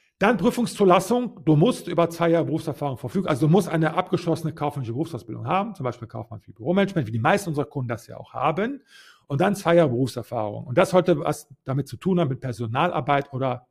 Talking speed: 205 wpm